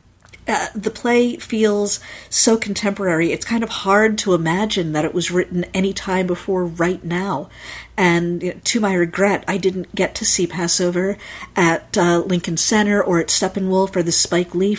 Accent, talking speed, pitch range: American, 170 wpm, 175-200 Hz